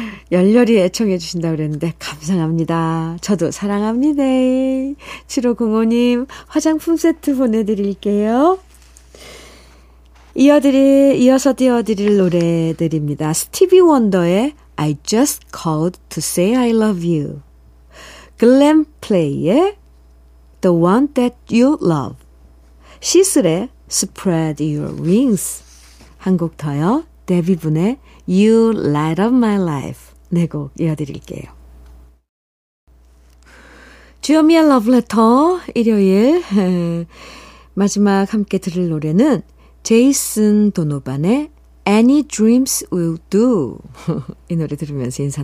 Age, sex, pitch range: 50-69, female, 155-250 Hz